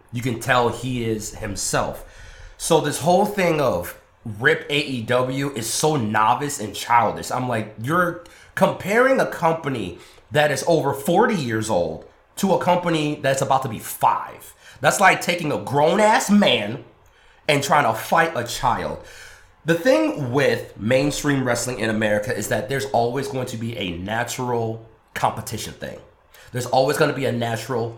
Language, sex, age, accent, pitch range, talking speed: English, male, 30-49, American, 110-155 Hz, 160 wpm